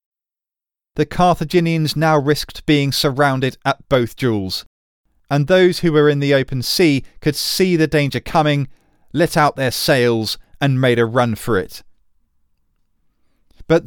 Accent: British